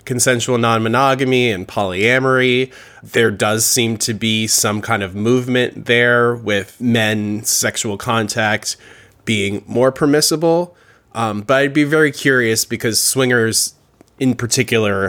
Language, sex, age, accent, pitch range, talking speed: English, male, 20-39, American, 100-130 Hz, 125 wpm